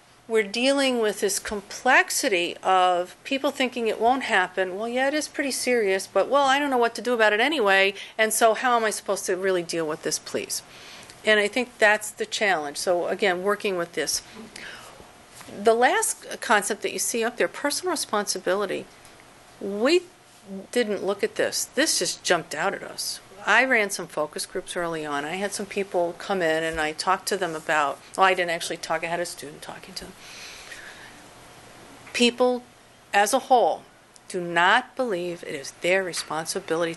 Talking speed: 185 wpm